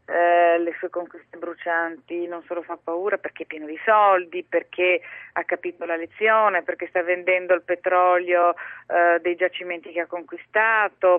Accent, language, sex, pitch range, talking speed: native, Italian, female, 175-205 Hz, 155 wpm